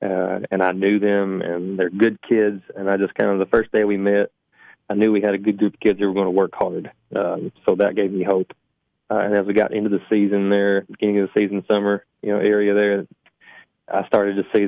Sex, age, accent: male, 20-39, American